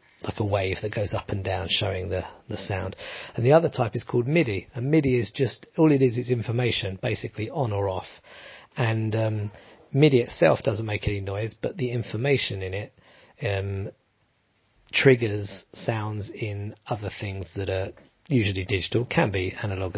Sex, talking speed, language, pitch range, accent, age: male, 175 wpm, English, 100-125 Hz, British, 40-59